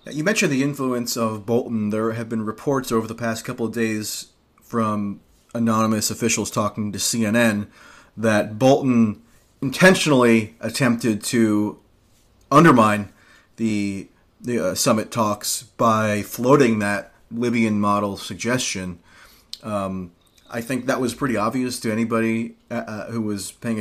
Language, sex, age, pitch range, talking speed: English, male, 30-49, 105-130 Hz, 130 wpm